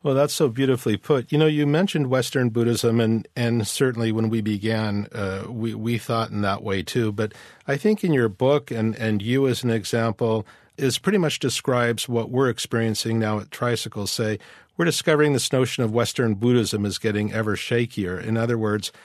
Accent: American